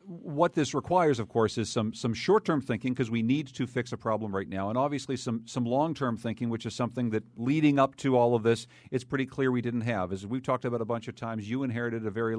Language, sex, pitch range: English, male, 115-150 Hz